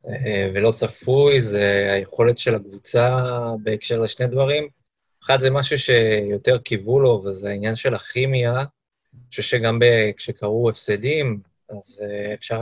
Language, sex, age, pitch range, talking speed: Hebrew, male, 20-39, 105-130 Hz, 125 wpm